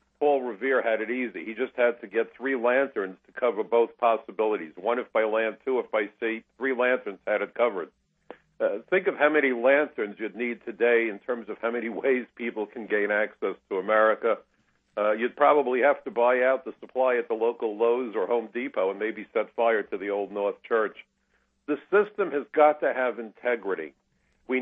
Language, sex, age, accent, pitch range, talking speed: English, male, 50-69, American, 110-140 Hz, 200 wpm